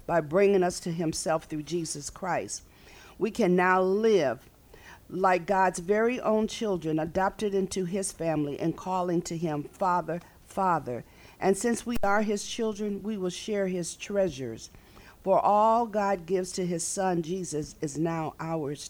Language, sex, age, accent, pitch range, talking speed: English, female, 50-69, American, 160-200 Hz, 155 wpm